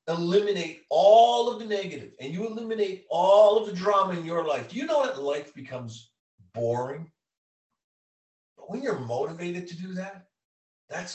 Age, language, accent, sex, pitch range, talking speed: 50-69, English, American, male, 115-170 Hz, 155 wpm